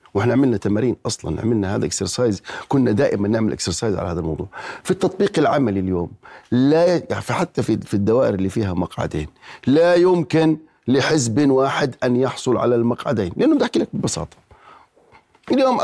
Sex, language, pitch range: male, Arabic, 130-180 Hz